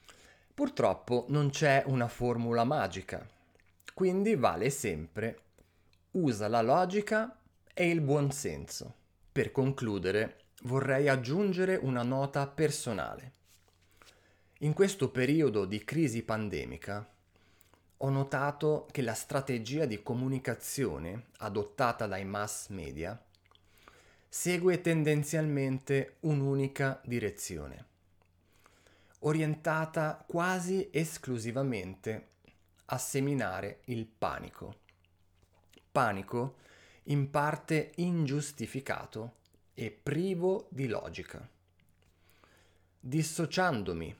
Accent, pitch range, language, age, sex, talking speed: native, 90-145 Hz, Italian, 30-49, male, 80 wpm